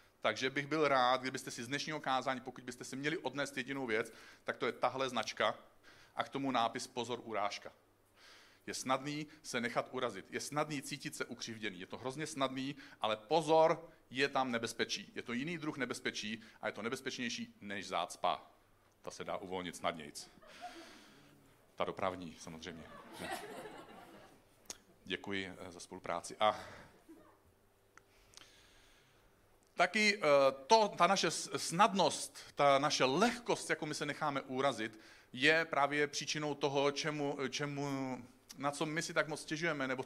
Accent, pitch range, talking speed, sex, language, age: native, 115-145 Hz, 145 wpm, male, Czech, 40-59